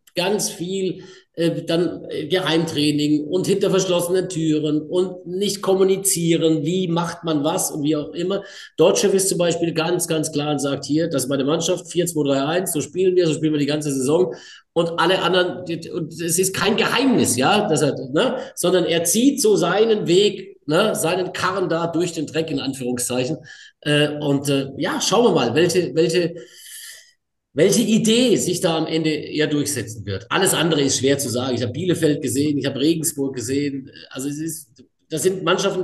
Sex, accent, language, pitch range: male, German, German, 145-180 Hz